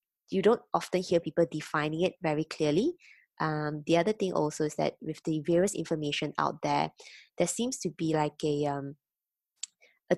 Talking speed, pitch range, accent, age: 175 wpm, 150-185 Hz, Malaysian, 20-39